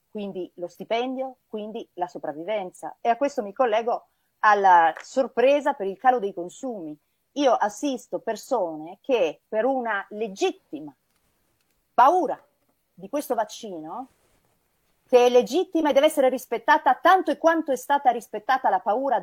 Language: Italian